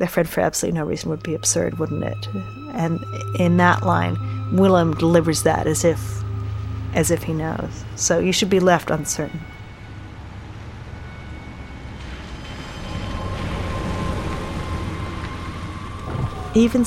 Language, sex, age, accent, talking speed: English, female, 40-59, American, 105 wpm